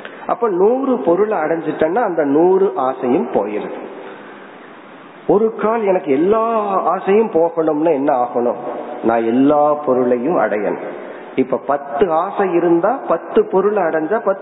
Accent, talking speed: native, 50 wpm